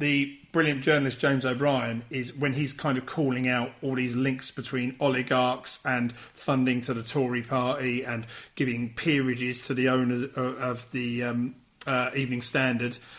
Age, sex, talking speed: 40-59, male, 160 wpm